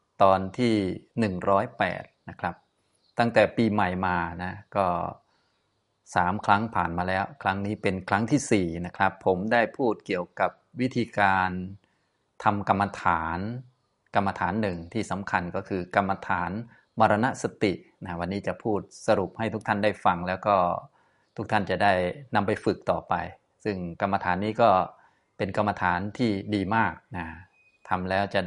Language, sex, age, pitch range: Thai, male, 20-39, 95-110 Hz